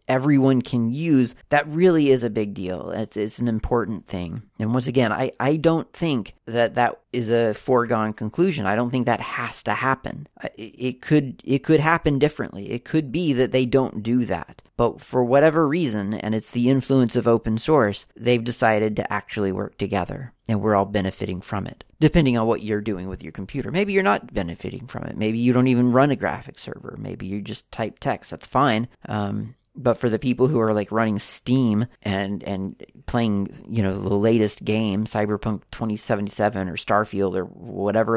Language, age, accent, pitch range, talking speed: English, 30-49, American, 105-130 Hz, 195 wpm